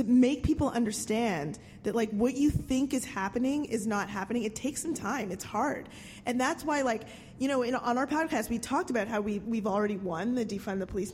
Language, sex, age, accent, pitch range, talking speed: English, female, 20-39, American, 210-280 Hz, 225 wpm